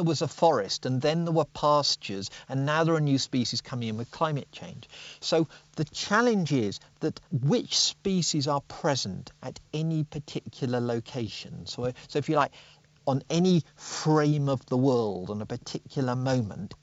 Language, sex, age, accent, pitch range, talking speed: English, male, 40-59, British, 120-155 Hz, 170 wpm